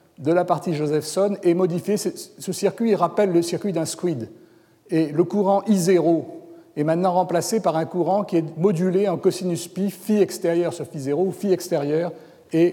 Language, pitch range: French, 150-180 Hz